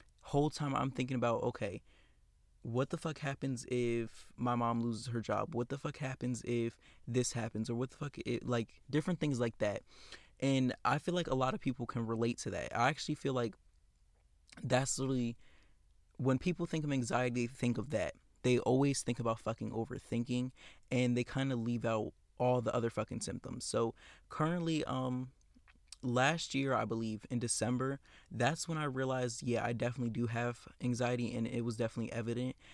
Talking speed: 185 wpm